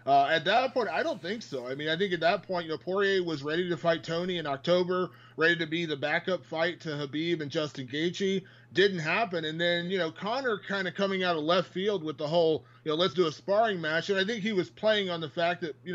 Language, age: English, 30-49